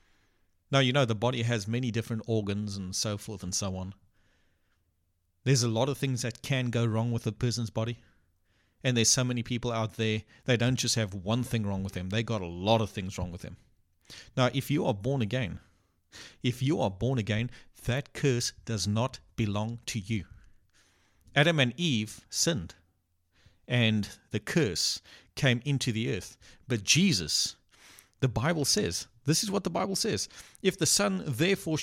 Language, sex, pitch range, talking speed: English, male, 100-125 Hz, 185 wpm